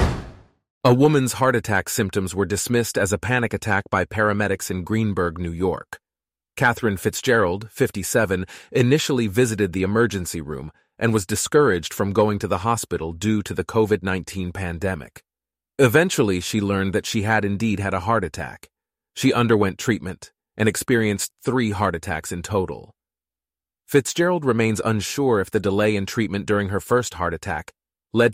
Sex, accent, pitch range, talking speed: male, American, 95-115 Hz, 155 wpm